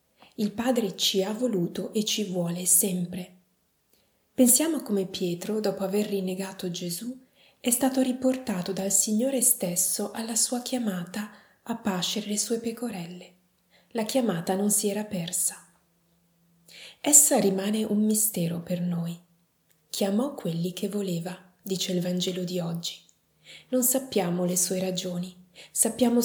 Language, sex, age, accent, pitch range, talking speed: Italian, female, 30-49, native, 185-230 Hz, 130 wpm